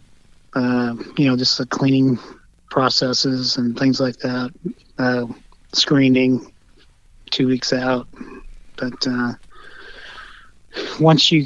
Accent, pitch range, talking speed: American, 125-140 Hz, 105 wpm